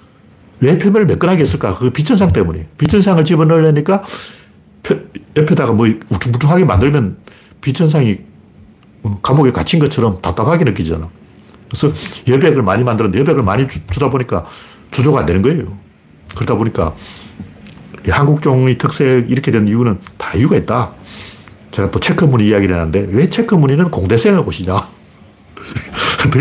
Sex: male